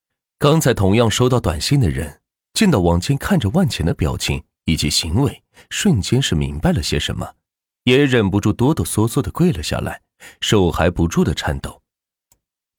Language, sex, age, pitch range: Chinese, male, 30-49, 80-130 Hz